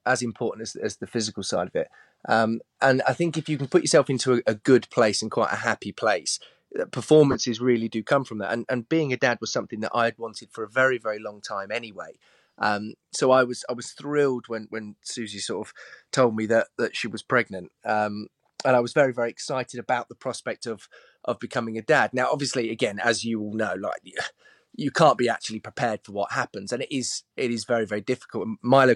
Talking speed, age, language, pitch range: 230 wpm, 30-49, English, 110-130 Hz